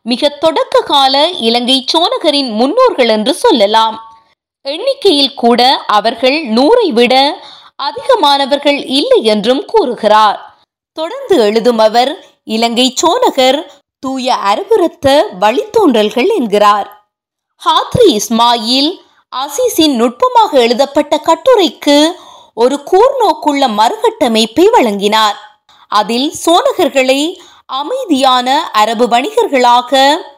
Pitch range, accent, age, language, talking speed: 240-335 Hz, native, 20-39, Tamil, 40 wpm